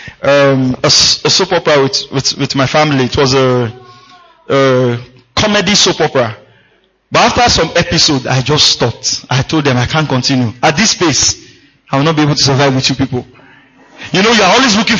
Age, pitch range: 30-49, 135-210 Hz